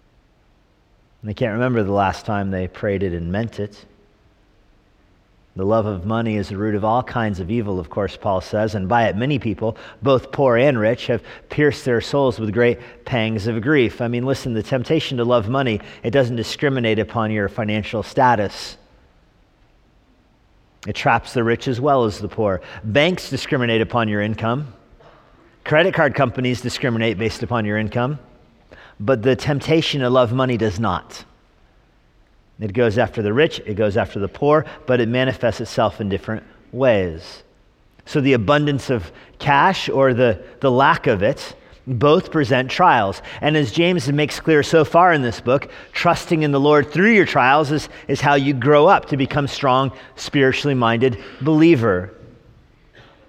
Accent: American